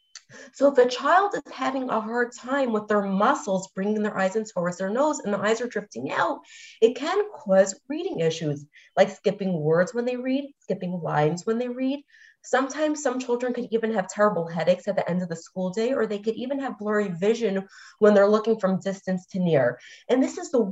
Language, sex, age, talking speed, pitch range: English, female, 30-49, 215 wpm, 195-255 Hz